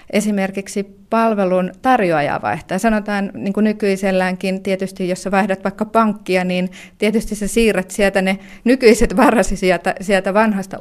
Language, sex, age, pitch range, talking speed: Finnish, female, 30-49, 175-205 Hz, 135 wpm